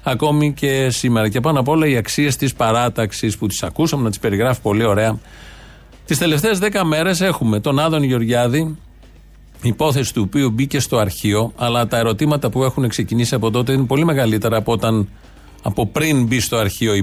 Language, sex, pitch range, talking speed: Greek, male, 110-145 Hz, 185 wpm